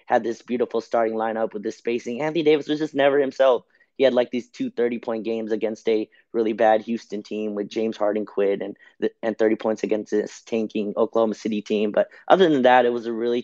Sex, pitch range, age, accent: male, 110-120 Hz, 20-39, American